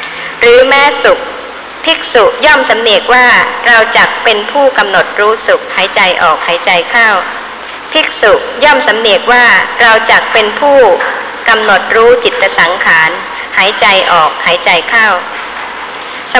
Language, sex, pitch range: Thai, male, 205-335 Hz